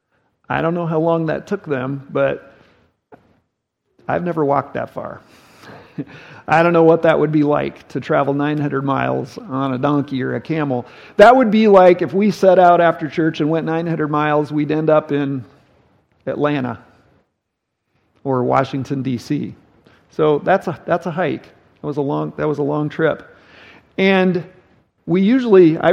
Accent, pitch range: American, 140-175 Hz